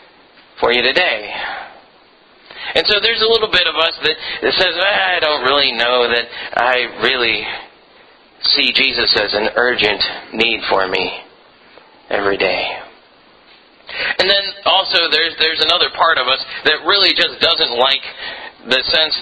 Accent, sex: American, male